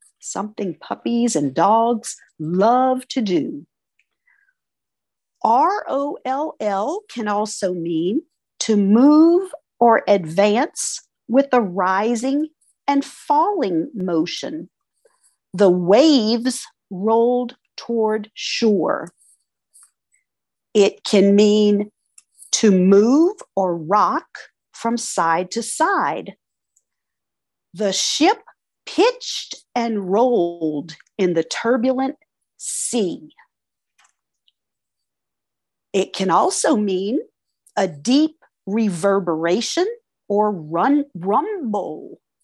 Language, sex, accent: English, female, American